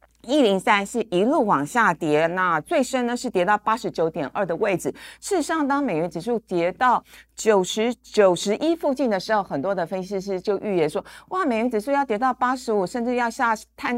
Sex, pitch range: female, 175-245 Hz